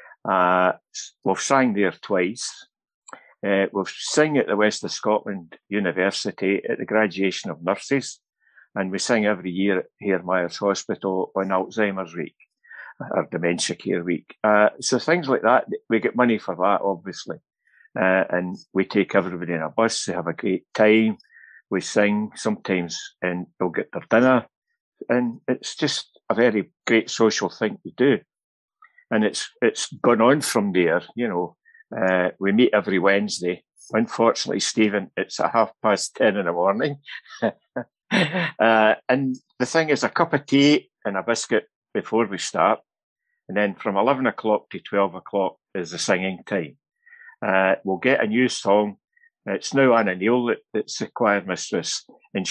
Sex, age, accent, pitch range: male, 60-79, British, 95-125 Hz